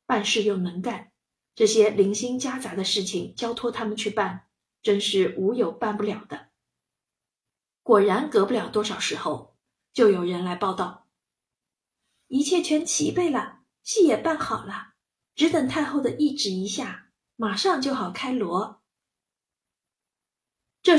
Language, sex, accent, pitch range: Chinese, female, native, 195-245 Hz